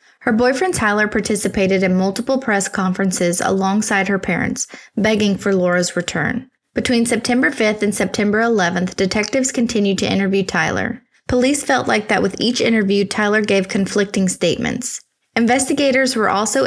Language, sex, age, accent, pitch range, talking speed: English, female, 20-39, American, 190-235 Hz, 145 wpm